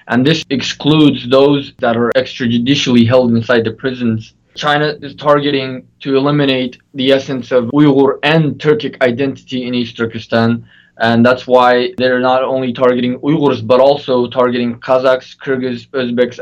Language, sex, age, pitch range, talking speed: English, male, 20-39, 120-140 Hz, 145 wpm